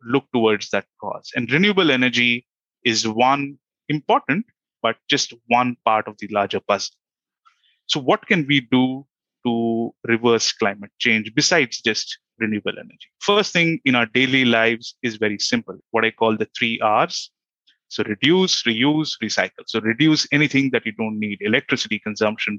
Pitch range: 115-145 Hz